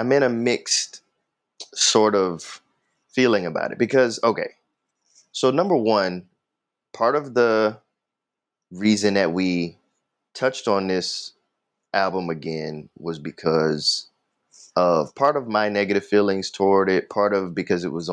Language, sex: English, male